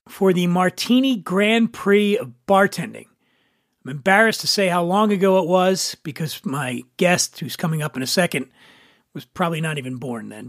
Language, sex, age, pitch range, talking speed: English, male, 40-59, 175-225 Hz, 175 wpm